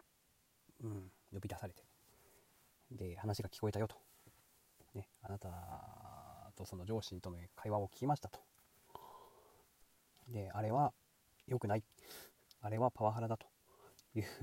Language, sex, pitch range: Japanese, male, 100-125 Hz